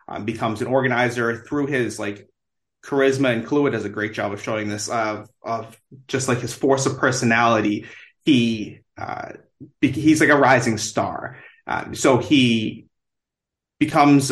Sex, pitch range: male, 115-135 Hz